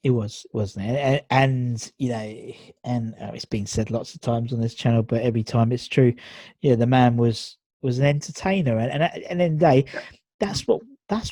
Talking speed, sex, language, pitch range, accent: 210 wpm, male, English, 120-155 Hz, British